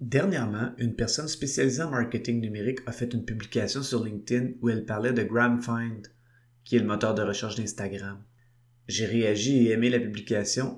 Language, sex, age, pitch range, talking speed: French, male, 30-49, 110-120 Hz, 175 wpm